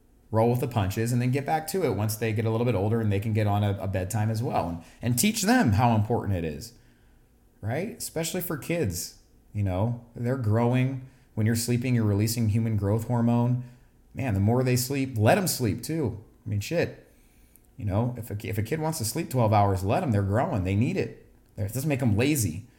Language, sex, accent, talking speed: English, male, American, 225 wpm